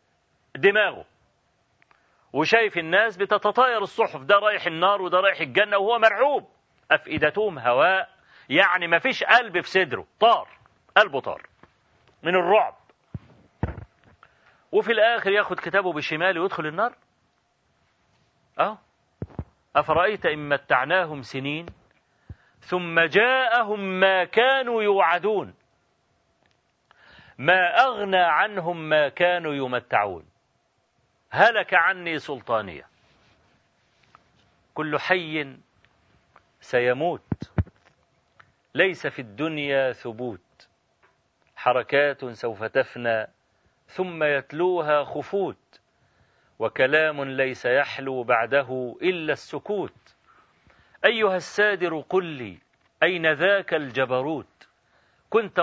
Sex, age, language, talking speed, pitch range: male, 40-59, Arabic, 85 wpm, 140-195 Hz